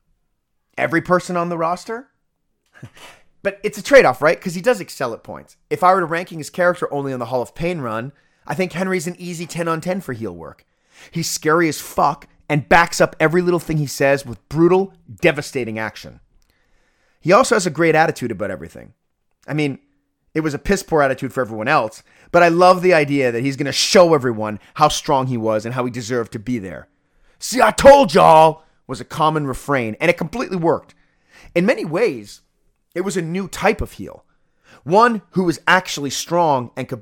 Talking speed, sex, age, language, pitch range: 200 wpm, male, 30-49, English, 130-180 Hz